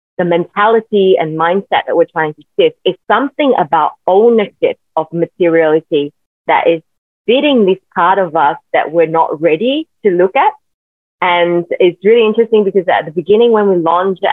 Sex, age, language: female, 20-39, English